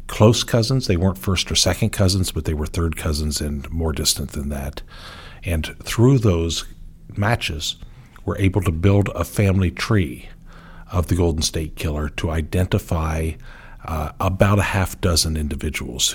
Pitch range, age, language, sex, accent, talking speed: 80-100 Hz, 50-69, English, male, American, 155 wpm